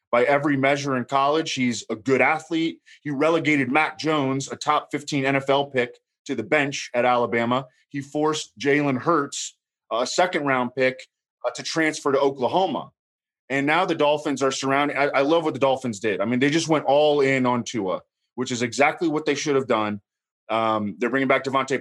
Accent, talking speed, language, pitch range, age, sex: American, 195 wpm, English, 125-150 Hz, 20-39, male